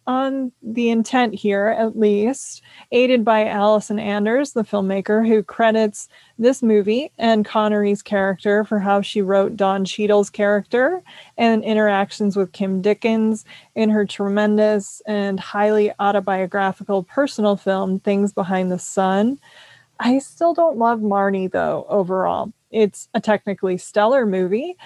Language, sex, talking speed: English, female, 135 wpm